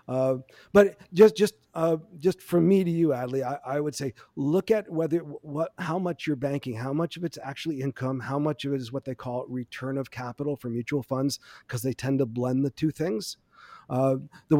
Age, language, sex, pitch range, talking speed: 40-59, English, male, 130-165 Hz, 220 wpm